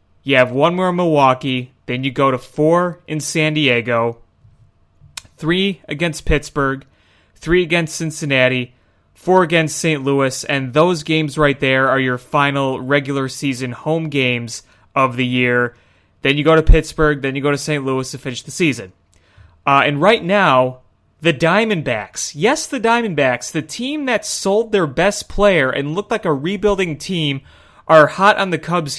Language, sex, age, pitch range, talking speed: English, male, 30-49, 120-160 Hz, 170 wpm